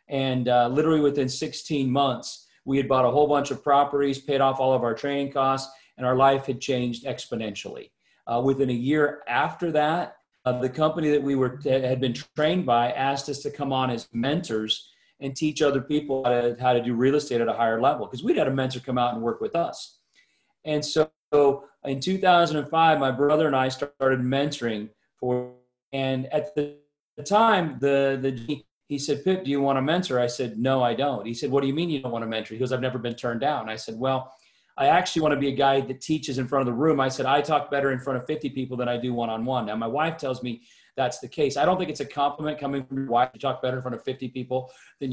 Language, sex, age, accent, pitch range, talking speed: English, male, 40-59, American, 130-150 Hz, 245 wpm